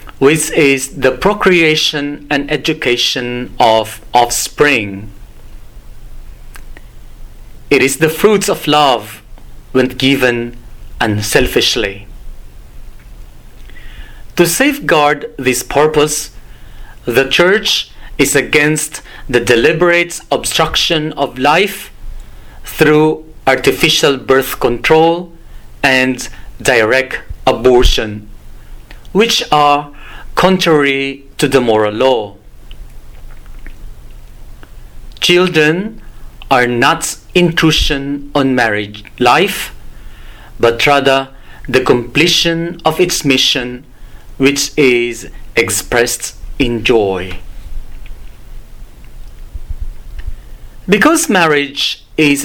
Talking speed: 75 wpm